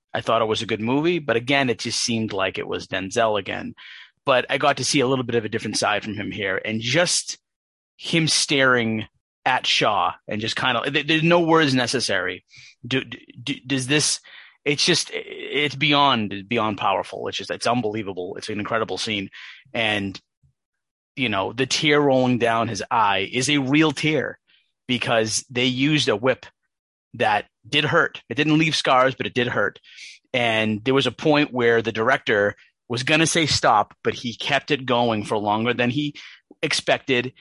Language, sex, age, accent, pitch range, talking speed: English, male, 30-49, American, 110-140 Hz, 185 wpm